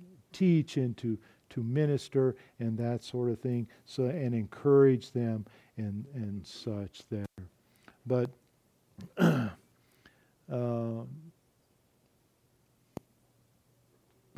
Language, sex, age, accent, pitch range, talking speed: English, male, 50-69, American, 115-135 Hz, 85 wpm